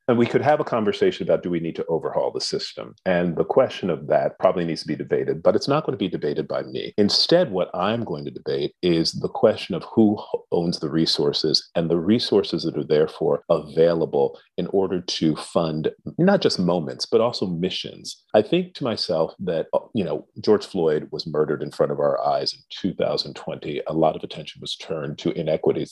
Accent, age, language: American, 40-59, English